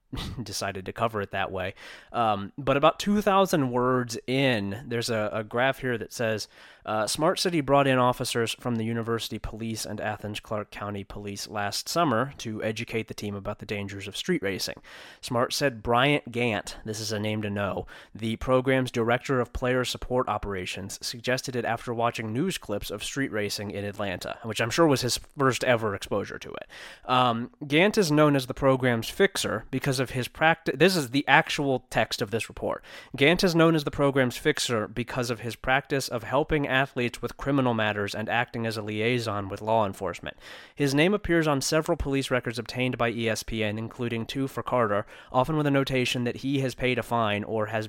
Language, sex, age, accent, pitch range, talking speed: English, male, 20-39, American, 110-135 Hz, 195 wpm